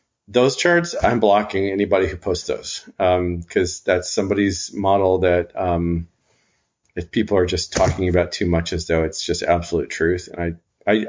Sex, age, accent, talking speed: male, 40-59, American, 170 wpm